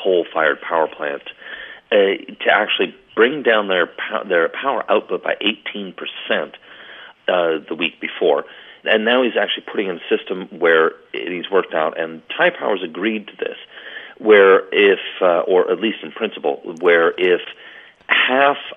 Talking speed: 175 wpm